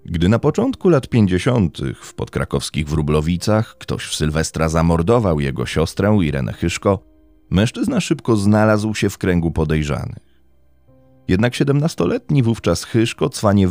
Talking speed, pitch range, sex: 125 wpm, 75-115 Hz, male